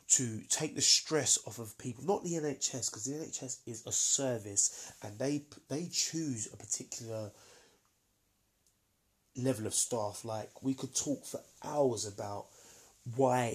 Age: 20-39